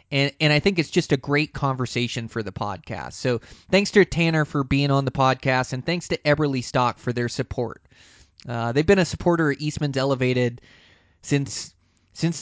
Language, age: English, 20-39